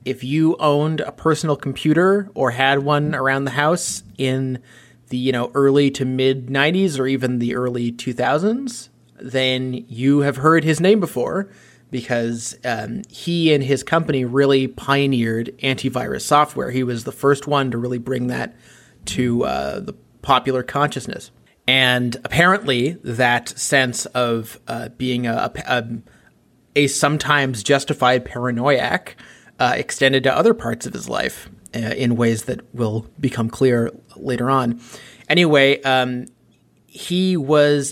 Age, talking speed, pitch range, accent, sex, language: 30-49, 145 wpm, 125-145 Hz, American, male, English